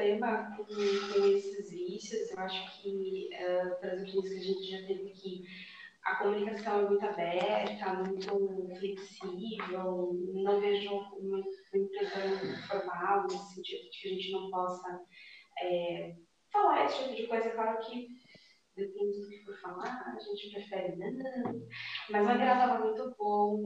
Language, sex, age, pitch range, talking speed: Bulgarian, female, 20-39, 190-220 Hz, 130 wpm